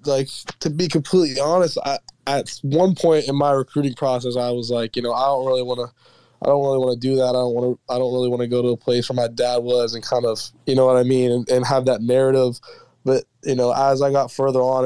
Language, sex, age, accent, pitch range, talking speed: English, male, 20-39, American, 115-130 Hz, 275 wpm